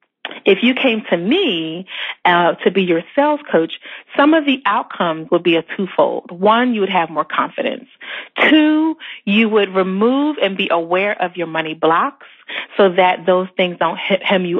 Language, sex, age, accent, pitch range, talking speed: English, female, 30-49, American, 175-240 Hz, 175 wpm